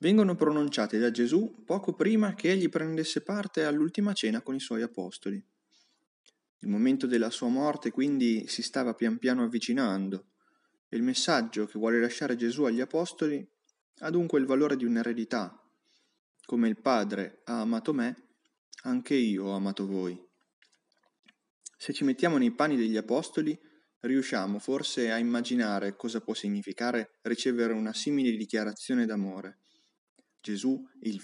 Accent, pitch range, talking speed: native, 110-155 Hz, 140 wpm